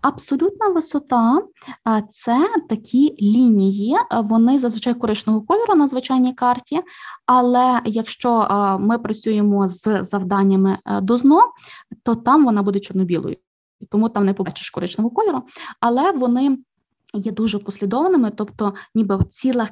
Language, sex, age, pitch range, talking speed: Ukrainian, female, 20-39, 205-285 Hz, 120 wpm